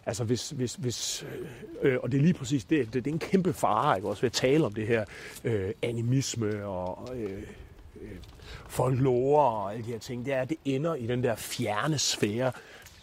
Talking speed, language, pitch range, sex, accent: 205 wpm, English, 110-155 Hz, male, Danish